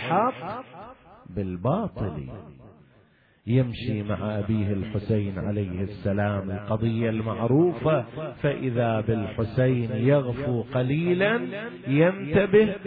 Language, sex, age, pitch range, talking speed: Arabic, male, 40-59, 110-170 Hz, 70 wpm